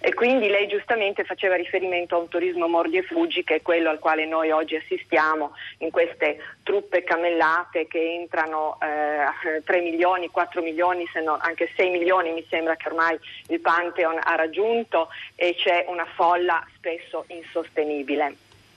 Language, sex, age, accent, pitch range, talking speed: Italian, female, 40-59, native, 160-205 Hz, 160 wpm